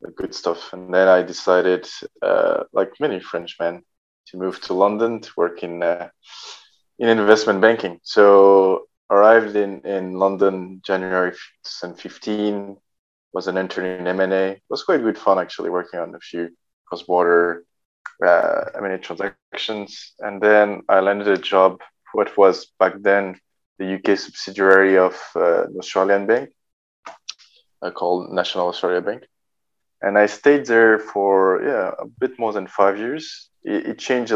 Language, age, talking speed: English, 20-39, 145 wpm